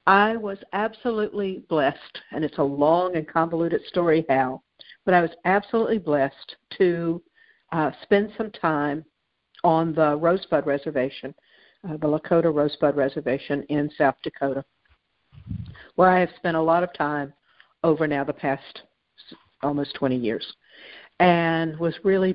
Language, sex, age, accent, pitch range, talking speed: English, female, 60-79, American, 145-185 Hz, 140 wpm